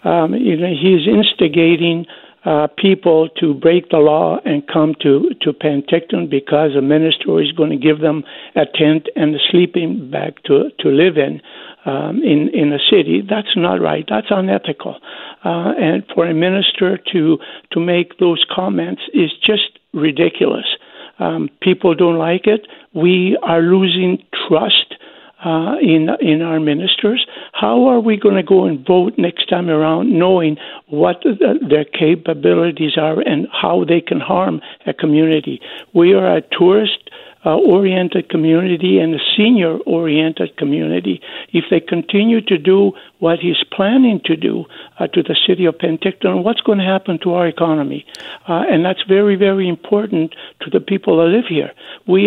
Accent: American